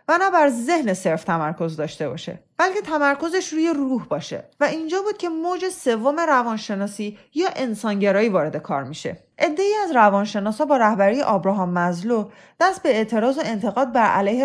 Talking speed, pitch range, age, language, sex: 160 wpm, 195-290 Hz, 30-49, Persian, female